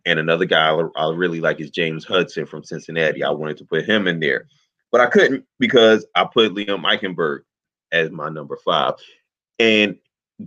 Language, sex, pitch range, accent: English, male, 90-130 Hz, American